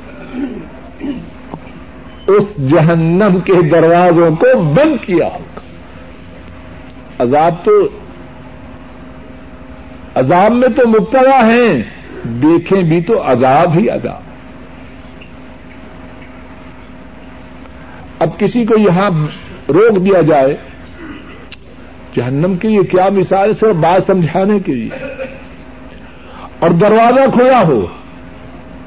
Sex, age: male, 60-79